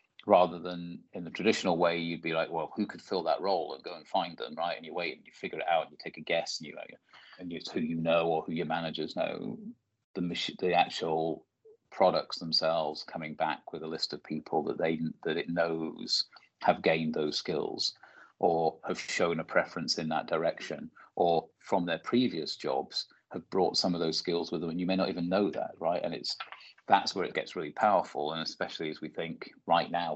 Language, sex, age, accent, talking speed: English, male, 30-49, British, 225 wpm